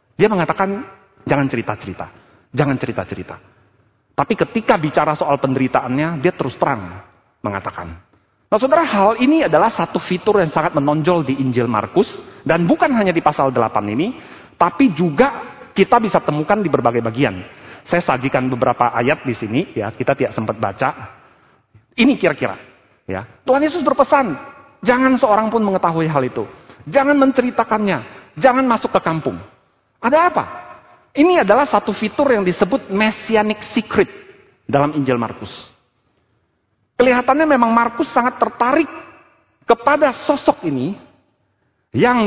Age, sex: 40-59, male